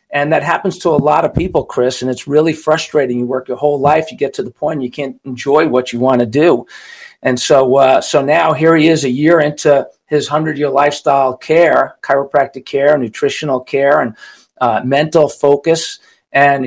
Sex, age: male, 50-69